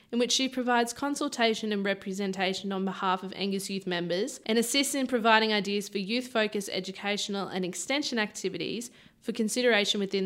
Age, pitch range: 20-39, 190-235 Hz